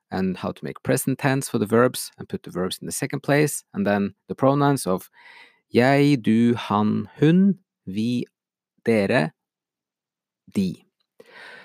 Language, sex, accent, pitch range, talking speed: English, male, Norwegian, 105-175 Hz, 155 wpm